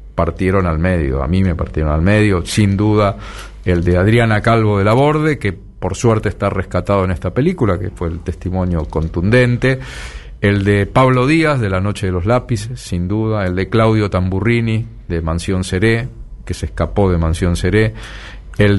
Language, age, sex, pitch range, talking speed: Spanish, 50-69, male, 90-110 Hz, 180 wpm